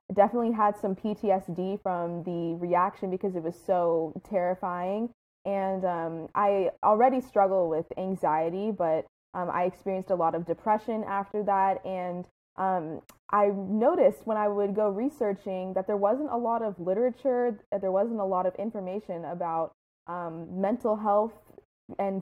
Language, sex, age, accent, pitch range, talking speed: English, female, 20-39, American, 175-205 Hz, 155 wpm